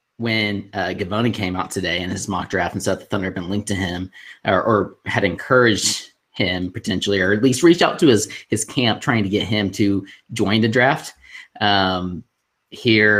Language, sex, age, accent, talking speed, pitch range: English, male, 30-49, American, 200 wpm, 95-115 Hz